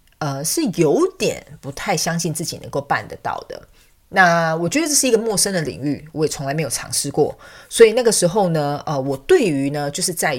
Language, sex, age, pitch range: Chinese, female, 30-49, 150-245 Hz